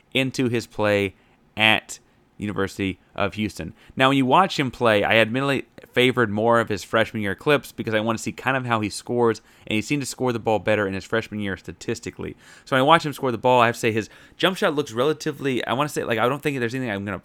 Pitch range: 100-130 Hz